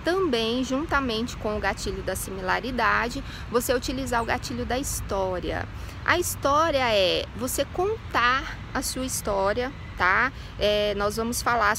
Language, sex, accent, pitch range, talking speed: Portuguese, female, Brazilian, 225-285 Hz, 125 wpm